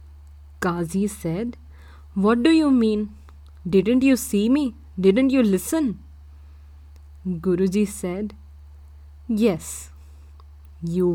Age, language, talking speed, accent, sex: 20-39, English, 90 wpm, Indian, female